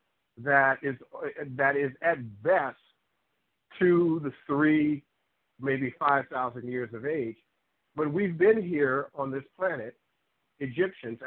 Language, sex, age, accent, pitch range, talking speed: English, male, 50-69, American, 130-170 Hz, 115 wpm